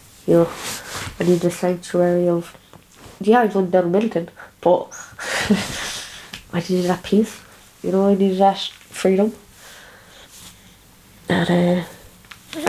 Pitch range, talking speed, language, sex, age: 170-200 Hz, 125 wpm, English, female, 20-39